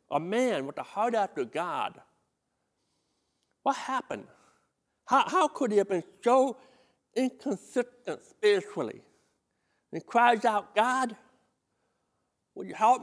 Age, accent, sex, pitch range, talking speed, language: 60-79, American, male, 155-245 Hz, 120 wpm, English